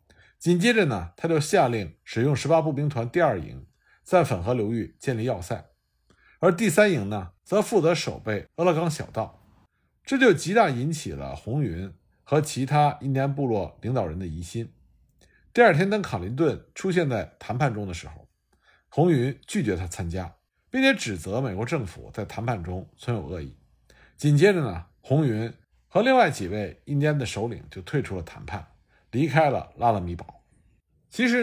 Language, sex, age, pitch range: Chinese, male, 50-69, 90-155 Hz